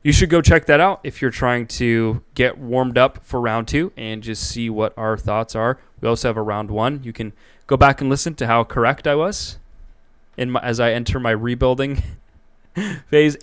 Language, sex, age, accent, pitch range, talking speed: English, male, 20-39, American, 110-135 Hz, 215 wpm